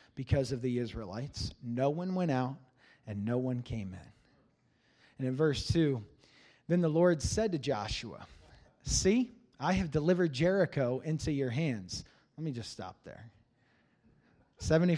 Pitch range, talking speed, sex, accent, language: 125-165 Hz, 150 wpm, male, American, English